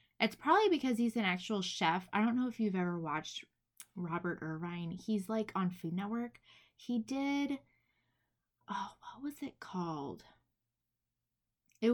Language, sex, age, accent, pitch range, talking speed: English, female, 20-39, American, 175-230 Hz, 145 wpm